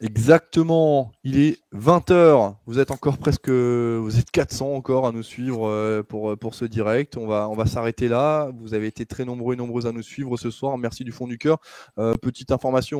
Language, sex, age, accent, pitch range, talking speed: French, male, 20-39, French, 110-140 Hz, 210 wpm